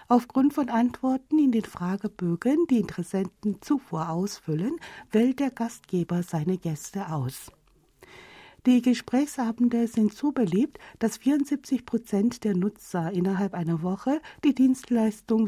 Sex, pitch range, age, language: female, 180-250 Hz, 60-79, German